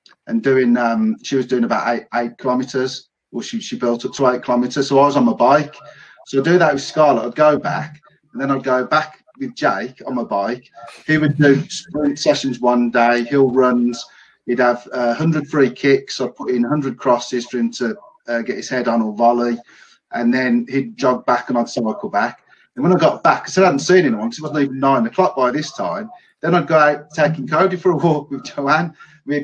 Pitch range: 120-155 Hz